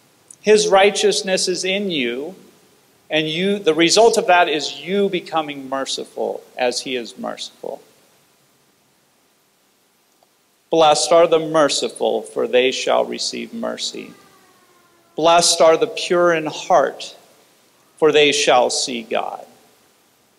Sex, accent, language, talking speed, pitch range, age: male, American, English, 115 wpm, 145-195 Hz, 40-59